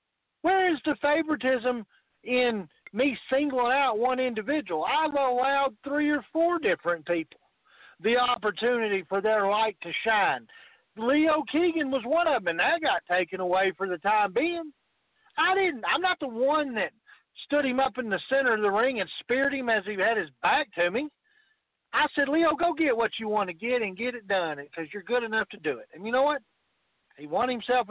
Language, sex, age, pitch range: English, male, 50-69, 190-275 Hz